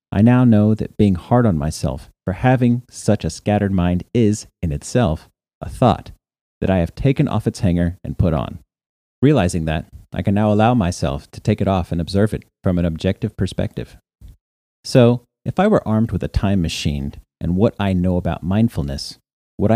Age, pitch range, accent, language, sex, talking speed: 40-59, 85-115 Hz, American, English, male, 190 wpm